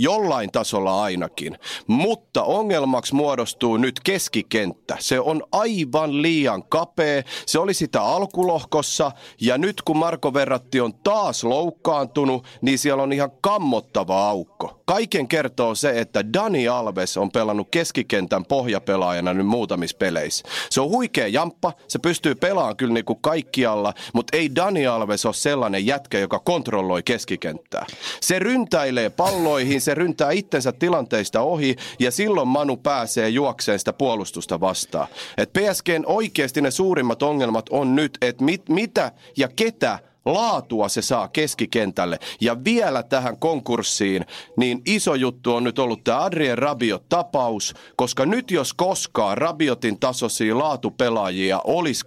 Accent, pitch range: native, 115-160 Hz